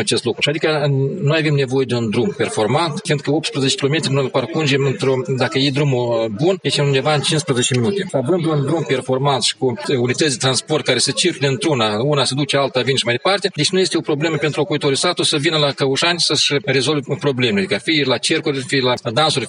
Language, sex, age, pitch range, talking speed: Romanian, male, 40-59, 130-155 Hz, 215 wpm